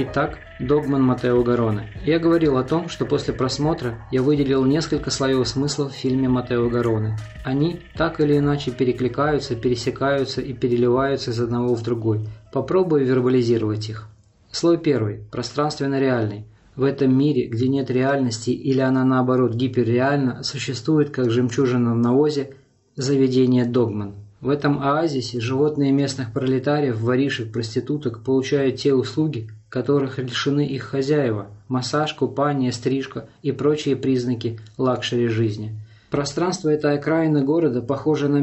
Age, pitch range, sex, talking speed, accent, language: 20-39, 120-145 Hz, male, 135 wpm, native, Russian